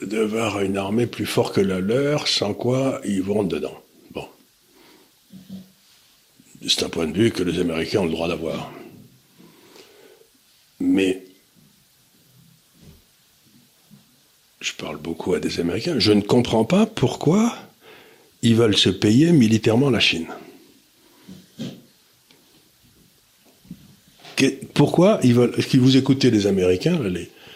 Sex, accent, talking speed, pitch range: male, French, 120 wpm, 100-170 Hz